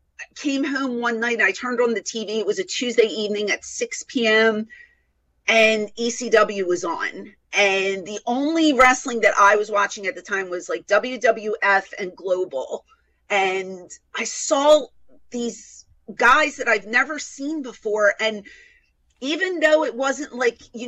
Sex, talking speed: female, 160 wpm